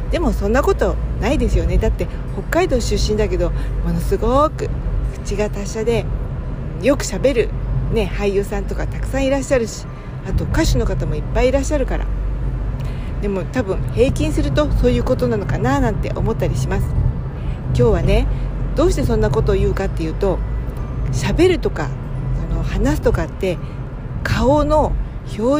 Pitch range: 120-200 Hz